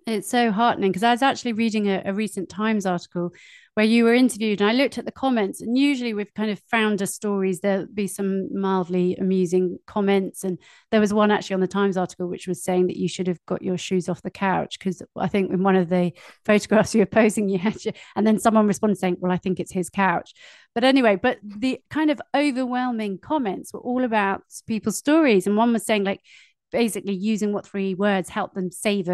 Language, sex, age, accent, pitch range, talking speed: English, female, 30-49, British, 190-235 Hz, 225 wpm